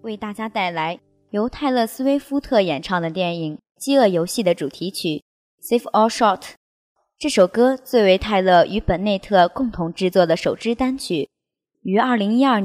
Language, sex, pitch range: Chinese, male, 175-240 Hz